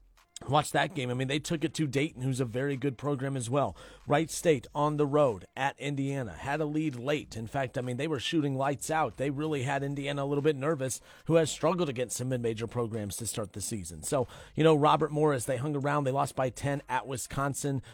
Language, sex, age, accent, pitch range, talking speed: English, male, 40-59, American, 130-155 Hz, 235 wpm